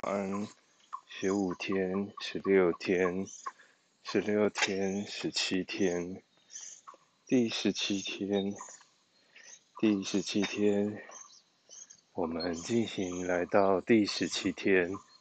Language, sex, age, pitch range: Chinese, male, 20-39, 95-115 Hz